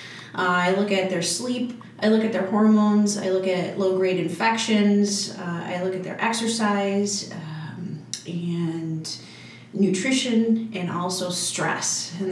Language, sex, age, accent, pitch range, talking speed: English, female, 30-49, American, 175-205 Hz, 140 wpm